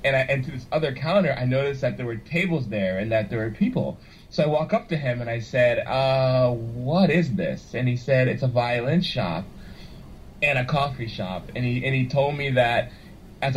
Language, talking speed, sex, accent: English, 225 wpm, male, American